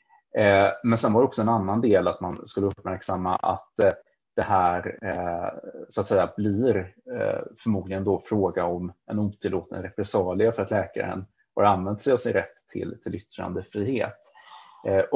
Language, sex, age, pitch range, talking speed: Swedish, male, 30-49, 95-110 Hz, 170 wpm